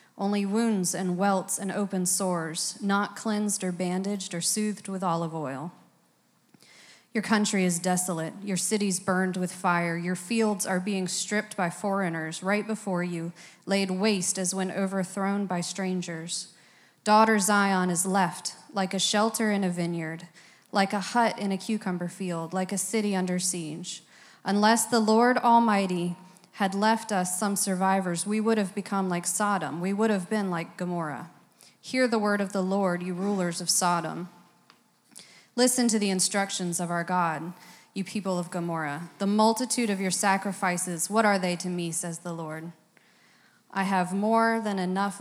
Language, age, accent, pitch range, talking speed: English, 30-49, American, 180-205 Hz, 165 wpm